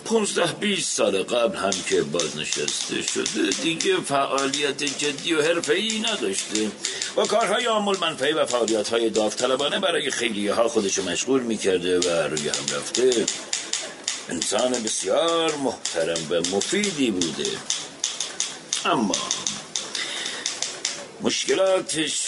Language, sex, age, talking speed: Persian, male, 60-79, 105 wpm